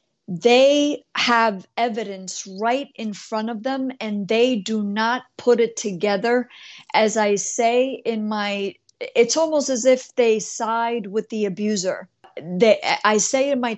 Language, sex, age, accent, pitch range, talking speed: English, female, 50-69, American, 210-245 Hz, 150 wpm